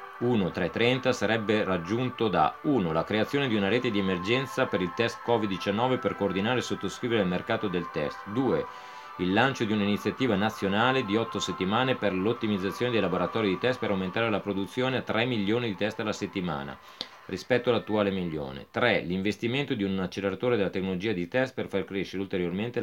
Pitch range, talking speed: 95-120 Hz, 175 wpm